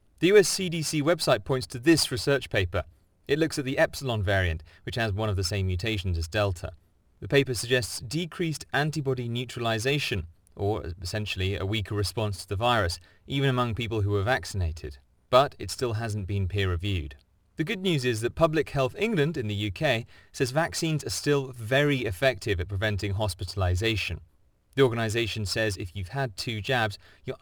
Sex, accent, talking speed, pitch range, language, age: male, British, 175 wpm, 95-130 Hz, English, 30-49